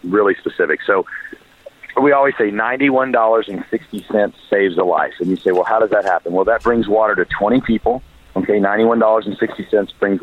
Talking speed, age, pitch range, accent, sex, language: 165 wpm, 40-59, 95-115 Hz, American, male, English